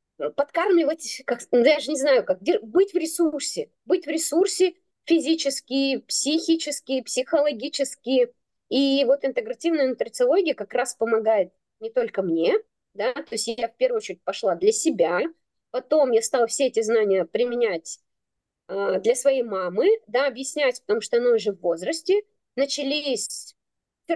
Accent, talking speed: native, 140 wpm